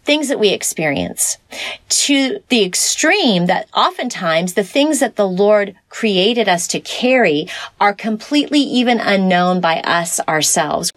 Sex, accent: female, American